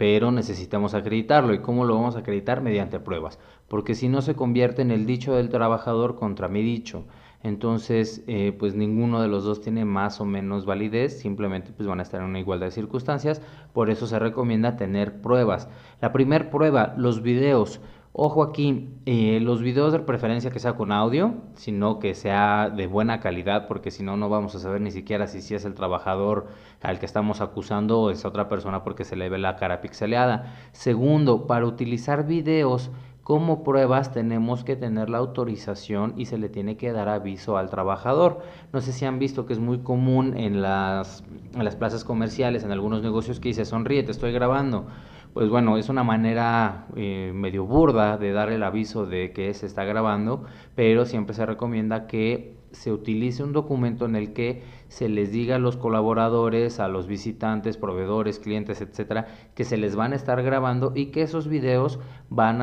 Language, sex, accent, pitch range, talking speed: Spanish, male, Mexican, 105-125 Hz, 190 wpm